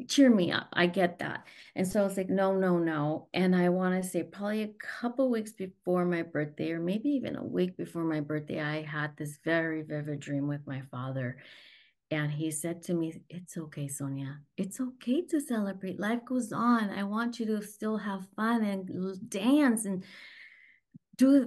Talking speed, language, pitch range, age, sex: 195 wpm, English, 155-210 Hz, 30-49, female